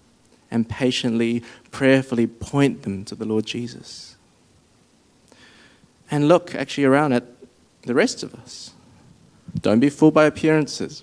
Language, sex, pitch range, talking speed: English, male, 115-135 Hz, 125 wpm